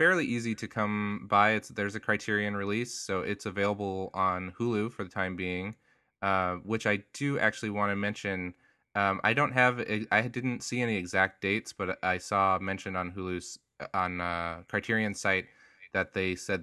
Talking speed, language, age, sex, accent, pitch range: 180 wpm, English, 20-39, male, American, 90-110 Hz